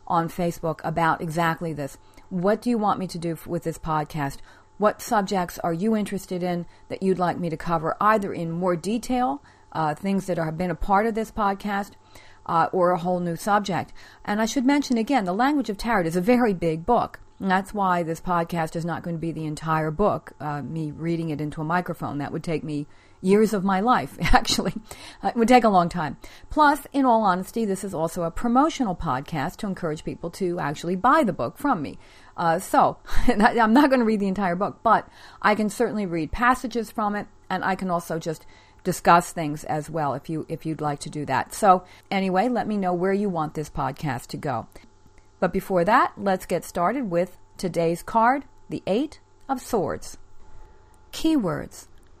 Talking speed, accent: 210 wpm, American